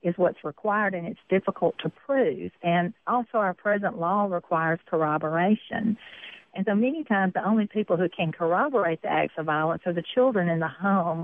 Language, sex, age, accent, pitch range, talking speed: English, female, 50-69, American, 165-210 Hz, 185 wpm